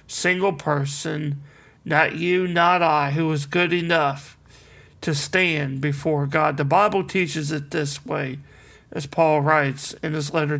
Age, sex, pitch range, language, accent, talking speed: 40-59, male, 145-175 Hz, English, American, 145 wpm